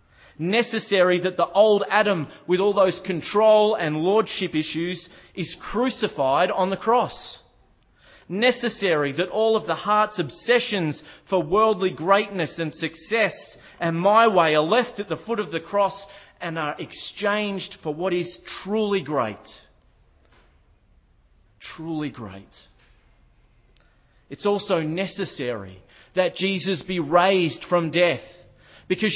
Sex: male